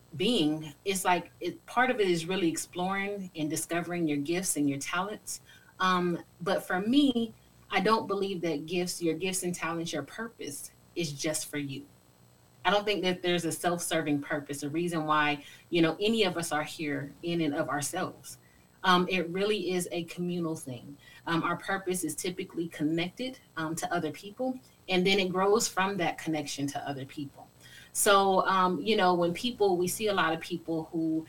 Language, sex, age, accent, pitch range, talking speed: English, female, 30-49, American, 150-185 Hz, 190 wpm